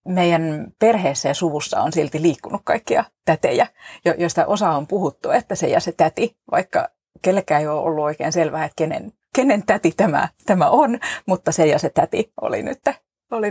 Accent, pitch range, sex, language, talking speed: native, 155-220 Hz, female, Finnish, 180 wpm